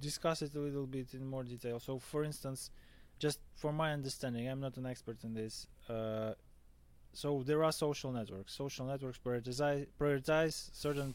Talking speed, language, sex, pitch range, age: 180 wpm, Ukrainian, male, 110-145 Hz, 20-39